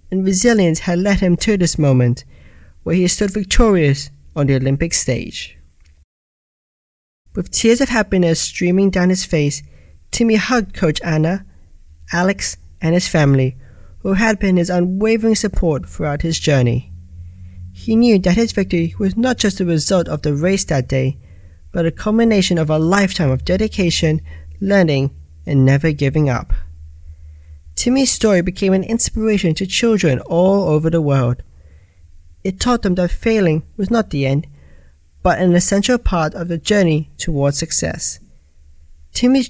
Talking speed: 150 wpm